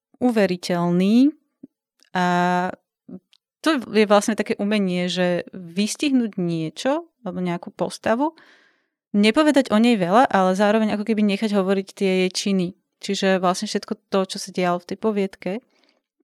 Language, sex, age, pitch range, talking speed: Slovak, female, 30-49, 175-210 Hz, 135 wpm